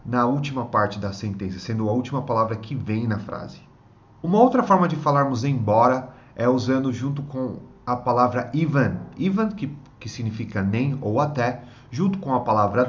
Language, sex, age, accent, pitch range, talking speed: Portuguese, male, 30-49, Brazilian, 110-135 Hz, 170 wpm